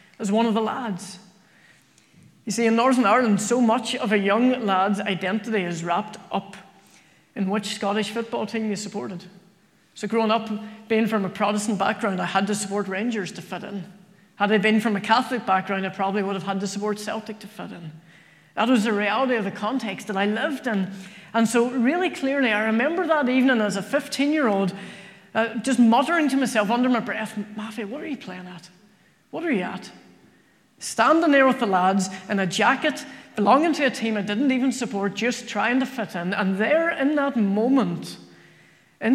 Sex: female